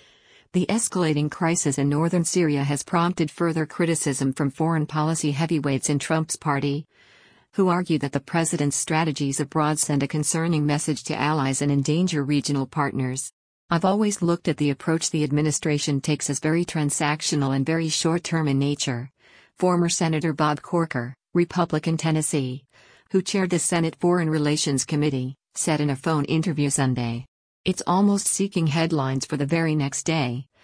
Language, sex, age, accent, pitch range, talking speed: English, female, 50-69, American, 145-165 Hz, 155 wpm